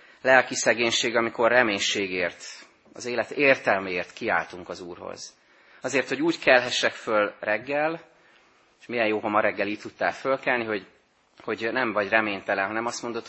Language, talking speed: Hungarian, 150 wpm